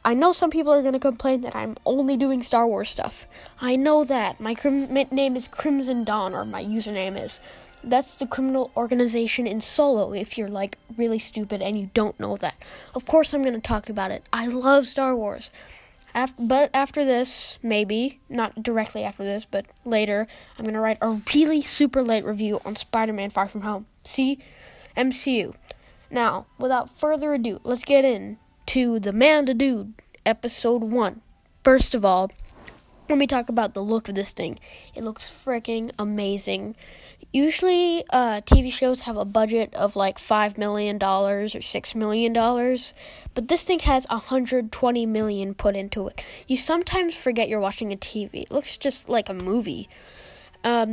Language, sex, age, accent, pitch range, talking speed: English, female, 10-29, American, 210-265 Hz, 175 wpm